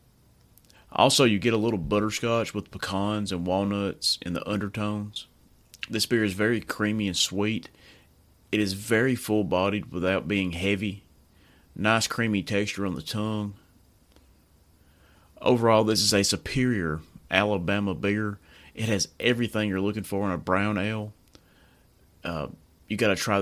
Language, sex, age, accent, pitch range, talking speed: English, male, 30-49, American, 95-105 Hz, 140 wpm